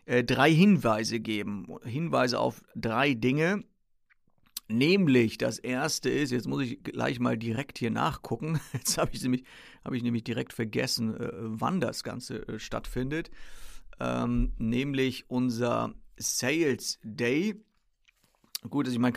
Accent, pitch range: German, 120-155 Hz